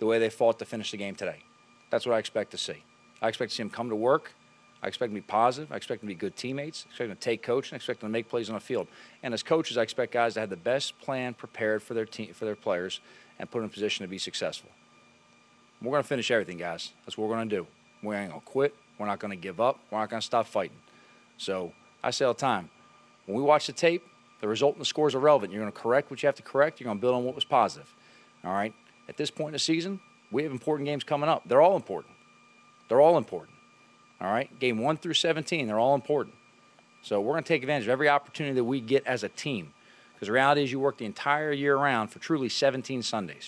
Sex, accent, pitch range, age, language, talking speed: male, American, 115-145 Hz, 40-59, English, 275 wpm